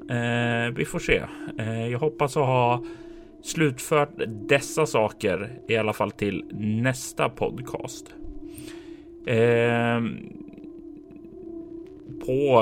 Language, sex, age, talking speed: Swedish, male, 30-49, 80 wpm